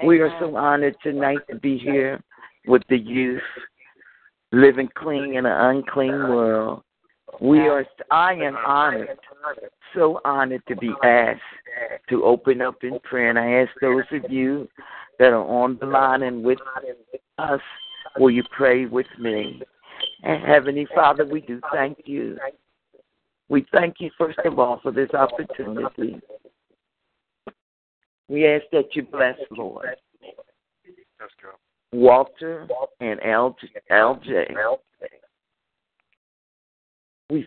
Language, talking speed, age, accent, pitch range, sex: English, 125 wpm, 50-69, American, 125-155 Hz, male